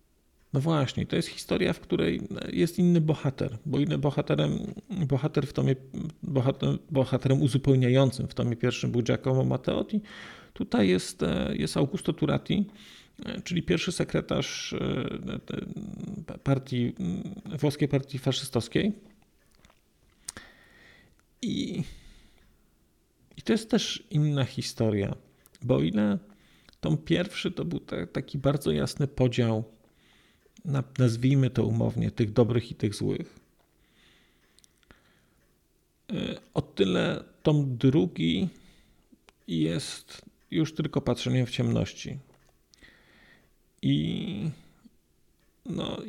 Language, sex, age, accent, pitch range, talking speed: Polish, male, 40-59, native, 120-165 Hz, 95 wpm